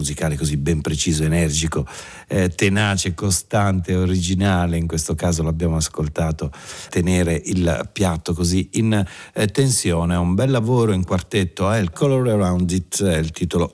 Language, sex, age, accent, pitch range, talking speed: Italian, male, 50-69, native, 80-105 Hz, 155 wpm